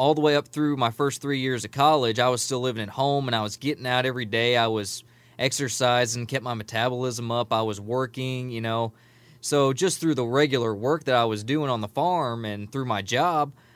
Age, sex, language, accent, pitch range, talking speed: 20-39, male, English, American, 115-135 Hz, 230 wpm